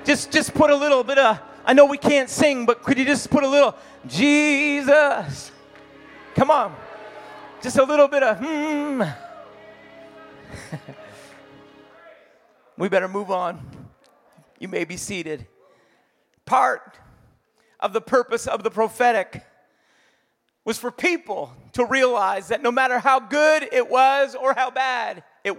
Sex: male